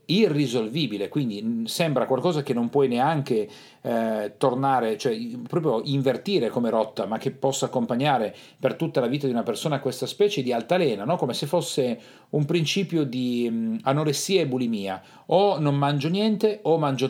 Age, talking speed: 40-59, 160 wpm